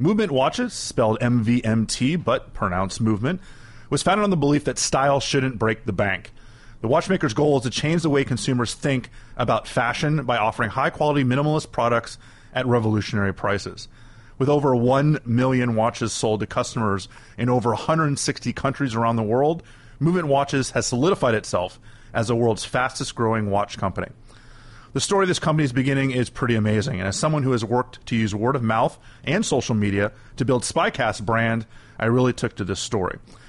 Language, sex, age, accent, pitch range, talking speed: English, male, 30-49, American, 110-140 Hz, 175 wpm